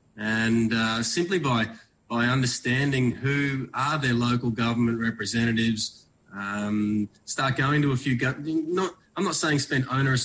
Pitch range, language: 115-135 Hz, English